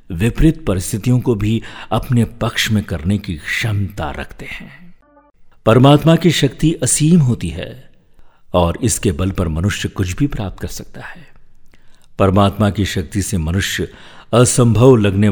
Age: 50-69